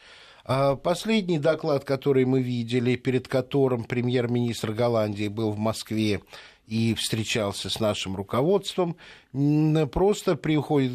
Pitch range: 110-140 Hz